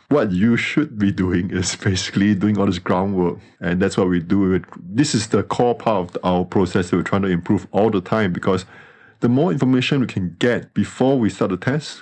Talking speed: 220 wpm